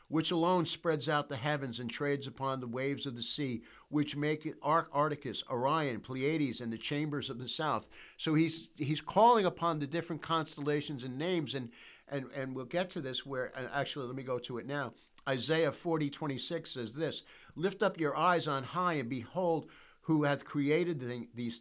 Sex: male